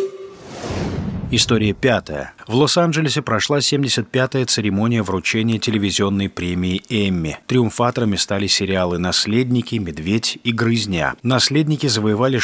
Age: 30-49